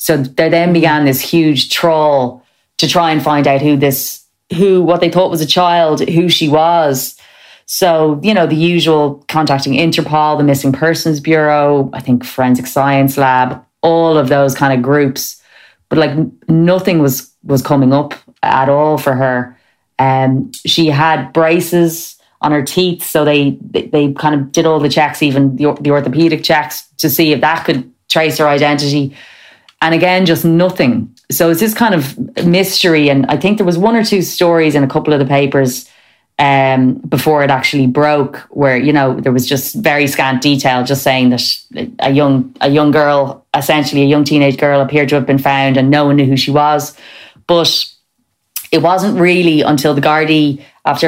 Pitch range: 135-160 Hz